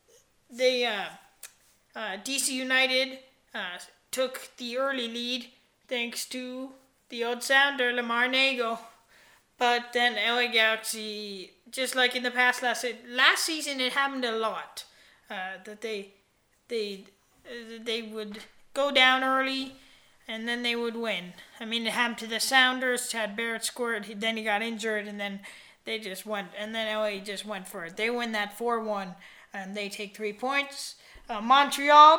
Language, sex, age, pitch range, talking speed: English, female, 20-39, 220-260 Hz, 160 wpm